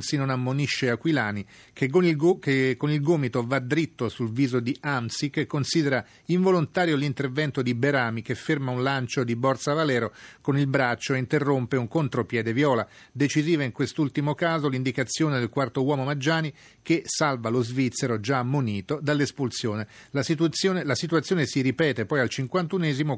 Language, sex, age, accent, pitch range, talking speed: Italian, male, 40-59, native, 120-150 Hz, 165 wpm